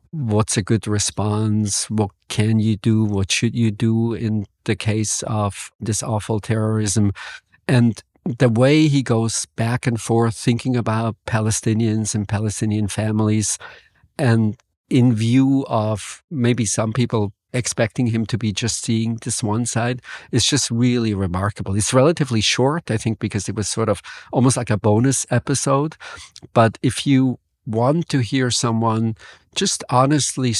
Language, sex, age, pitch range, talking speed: English, male, 50-69, 105-125 Hz, 150 wpm